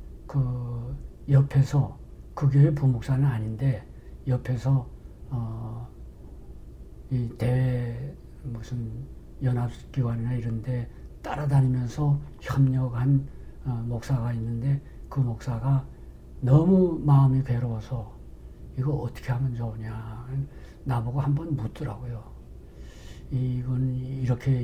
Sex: male